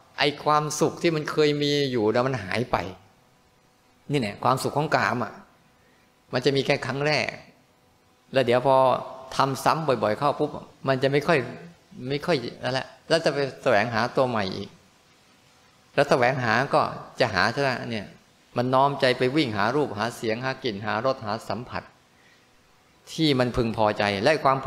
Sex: male